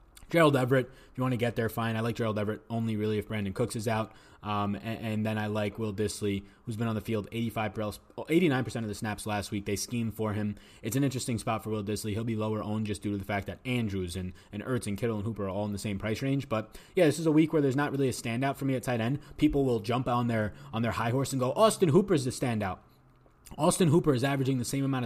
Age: 20-39